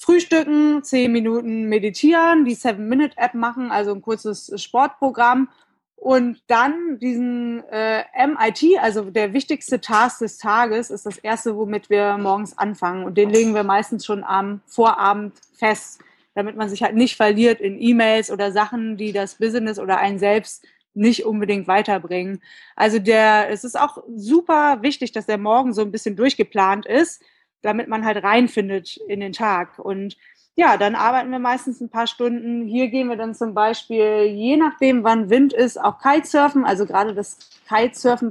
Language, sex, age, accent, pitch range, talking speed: German, female, 20-39, German, 205-255 Hz, 165 wpm